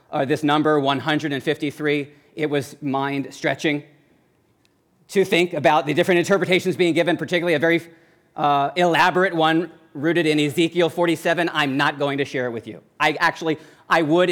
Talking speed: 155 wpm